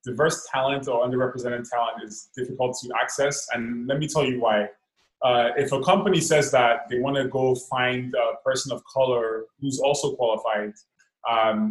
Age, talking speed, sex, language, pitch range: 20-39, 175 wpm, male, English, 120-145 Hz